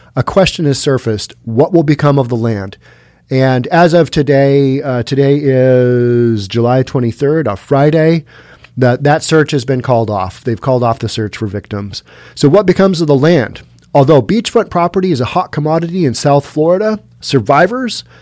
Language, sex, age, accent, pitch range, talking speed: English, male, 40-59, American, 125-175 Hz, 170 wpm